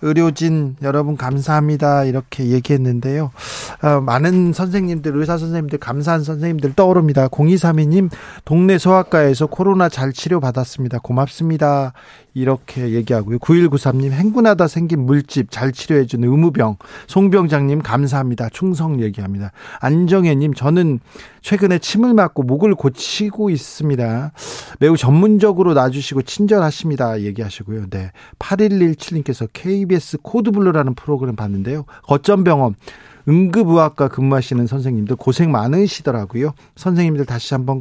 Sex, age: male, 40-59